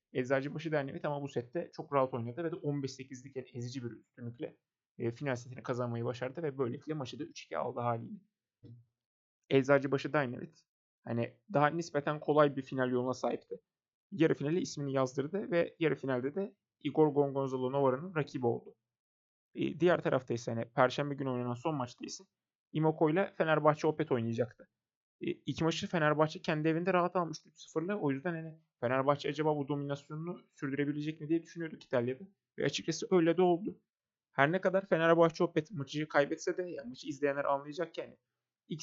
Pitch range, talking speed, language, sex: 135-165 Hz, 165 wpm, Turkish, male